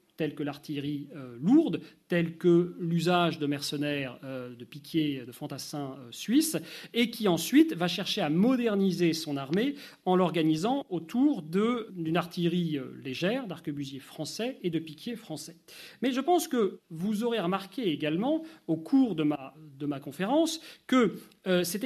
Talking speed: 160 wpm